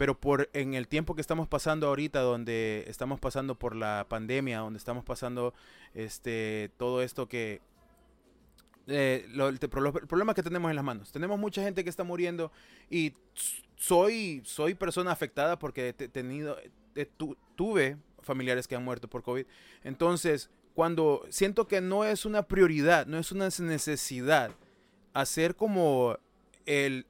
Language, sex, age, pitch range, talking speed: Spanish, male, 30-49, 130-185 Hz, 160 wpm